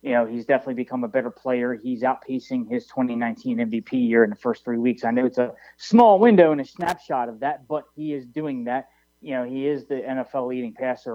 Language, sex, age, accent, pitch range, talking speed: English, male, 20-39, American, 125-145 Hz, 235 wpm